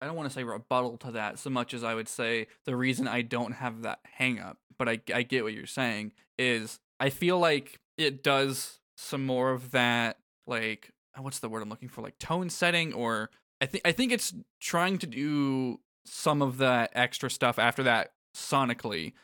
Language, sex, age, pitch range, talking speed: English, male, 20-39, 120-140 Hz, 205 wpm